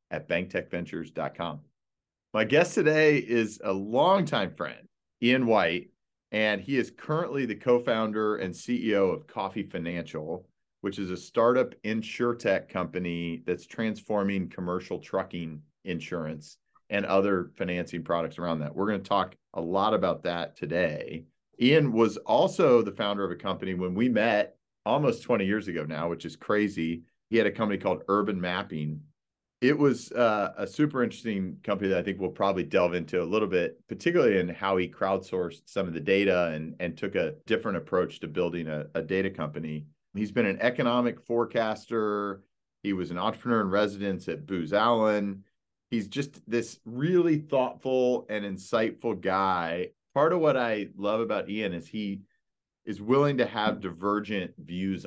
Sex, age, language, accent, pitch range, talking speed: male, 40-59, English, American, 90-115 Hz, 160 wpm